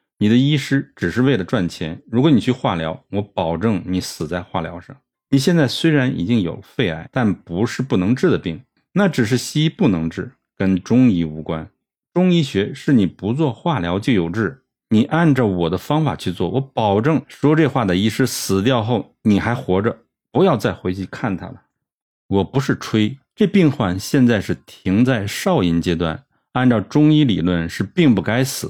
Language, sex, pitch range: Chinese, male, 90-135 Hz